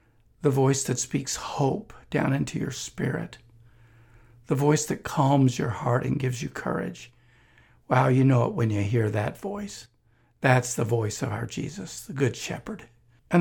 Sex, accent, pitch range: male, American, 120-165 Hz